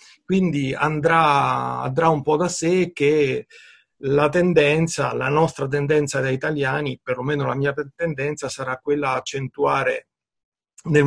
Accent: native